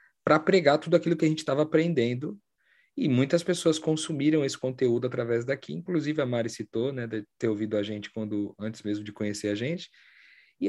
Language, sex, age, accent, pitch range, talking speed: Portuguese, male, 40-59, Brazilian, 105-150 Hz, 195 wpm